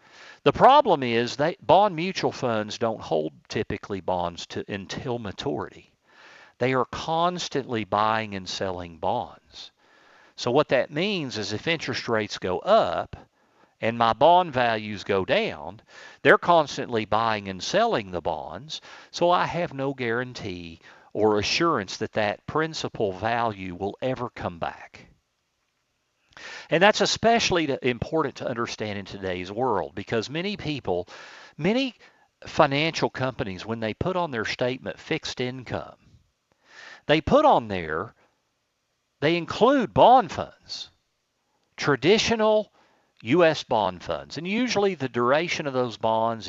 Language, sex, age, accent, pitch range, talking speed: English, male, 50-69, American, 105-165 Hz, 130 wpm